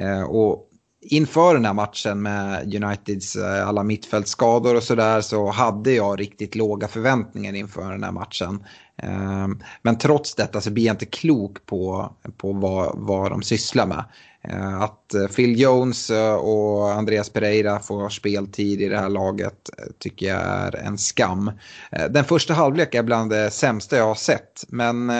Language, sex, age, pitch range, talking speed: Swedish, male, 30-49, 100-125 Hz, 150 wpm